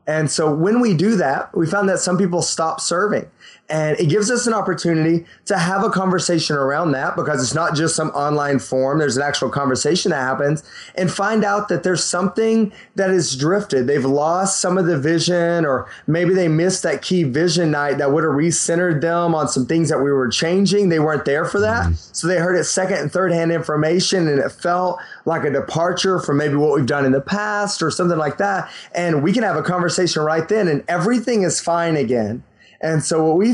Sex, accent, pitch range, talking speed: male, American, 145-185 Hz, 220 wpm